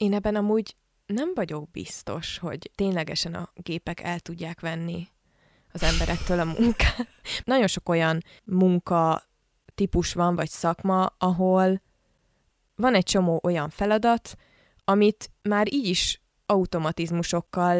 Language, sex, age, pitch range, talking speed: Hungarian, female, 20-39, 165-195 Hz, 120 wpm